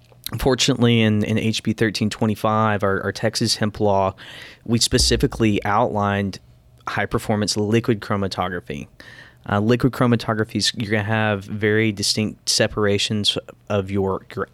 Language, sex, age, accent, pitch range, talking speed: English, male, 20-39, American, 100-115 Hz, 120 wpm